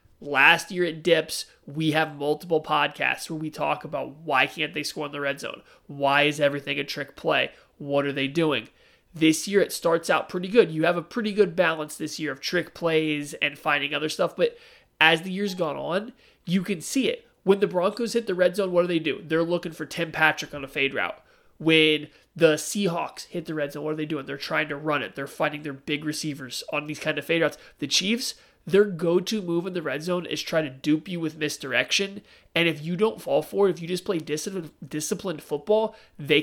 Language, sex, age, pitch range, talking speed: English, male, 30-49, 150-180 Hz, 230 wpm